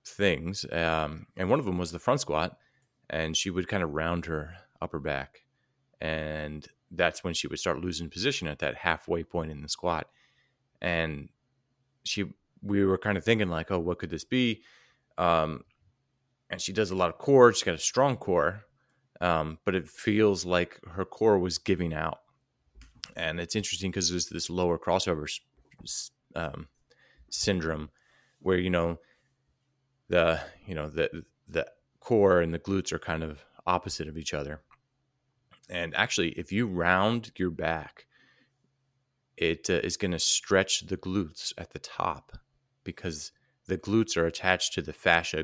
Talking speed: 165 wpm